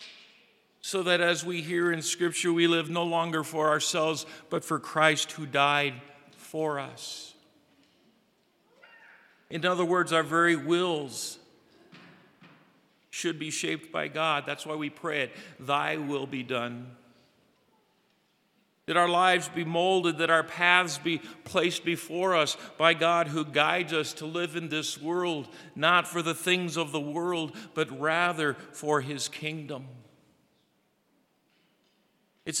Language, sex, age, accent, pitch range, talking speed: English, male, 50-69, American, 145-170 Hz, 140 wpm